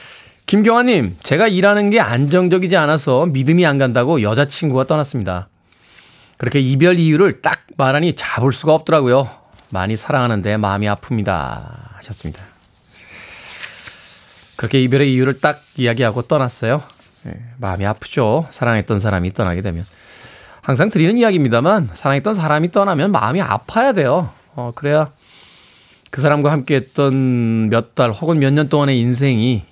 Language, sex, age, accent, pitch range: Korean, male, 20-39, native, 110-150 Hz